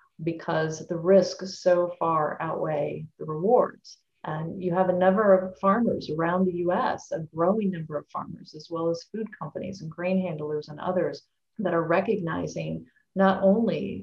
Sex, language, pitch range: female, English, 165-195 Hz